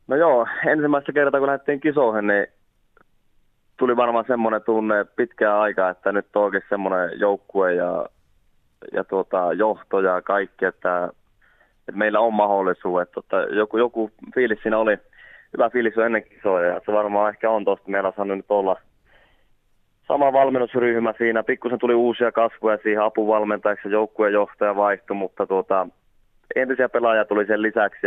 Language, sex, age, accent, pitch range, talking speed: Finnish, male, 20-39, native, 95-110 Hz, 150 wpm